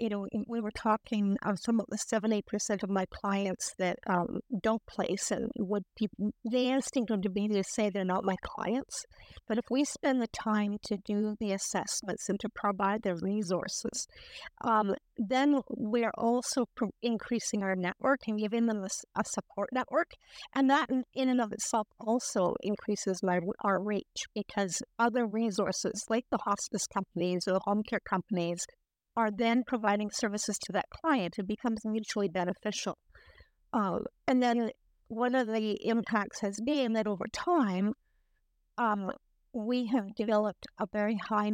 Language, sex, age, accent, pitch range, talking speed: English, female, 50-69, American, 200-235 Hz, 165 wpm